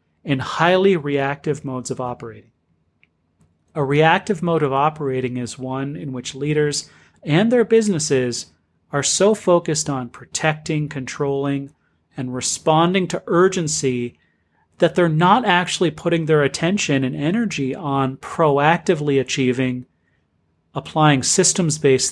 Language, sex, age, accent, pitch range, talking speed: English, male, 30-49, American, 130-160 Hz, 115 wpm